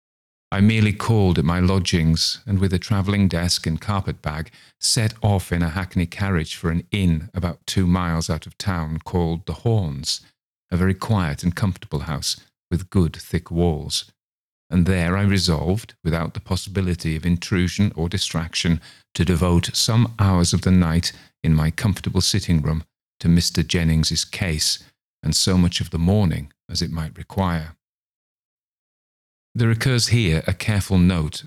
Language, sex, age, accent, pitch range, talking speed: English, male, 40-59, British, 80-100 Hz, 160 wpm